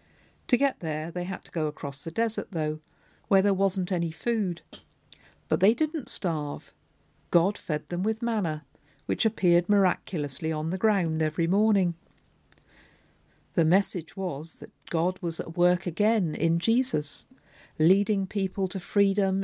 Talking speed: 150 wpm